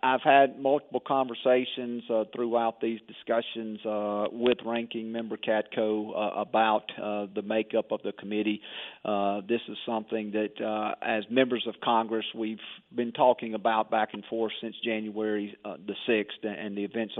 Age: 40-59